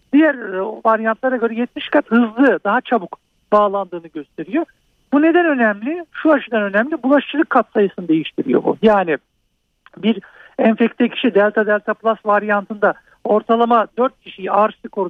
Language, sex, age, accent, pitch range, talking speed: Turkish, male, 50-69, native, 200-250 Hz, 135 wpm